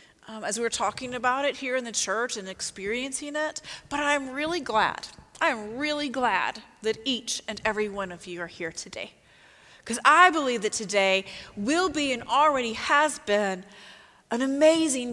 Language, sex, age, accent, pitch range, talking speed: English, female, 30-49, American, 190-245 Hz, 170 wpm